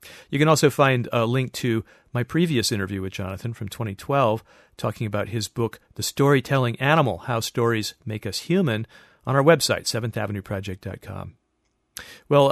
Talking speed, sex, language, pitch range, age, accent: 150 wpm, male, English, 105-125 Hz, 40-59, American